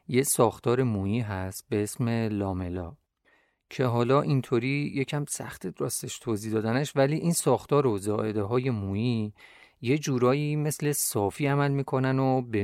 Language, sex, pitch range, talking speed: Persian, male, 105-130 Hz, 140 wpm